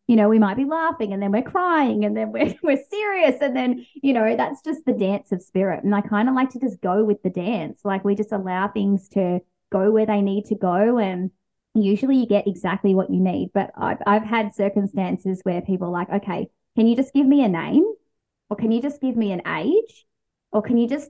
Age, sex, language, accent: 20-39, female, English, Australian